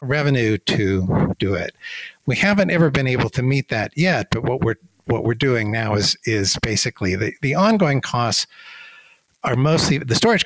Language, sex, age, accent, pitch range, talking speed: English, male, 60-79, American, 105-145 Hz, 180 wpm